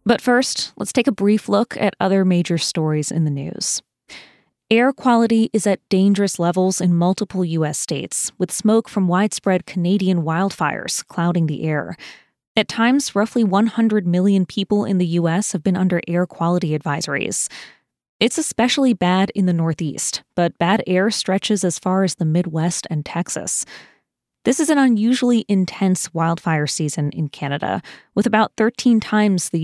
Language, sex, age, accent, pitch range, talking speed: English, female, 20-39, American, 170-220 Hz, 160 wpm